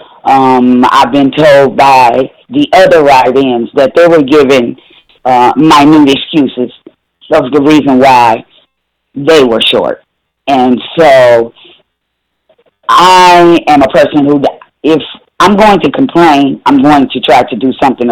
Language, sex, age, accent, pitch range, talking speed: English, female, 40-59, American, 135-195 Hz, 140 wpm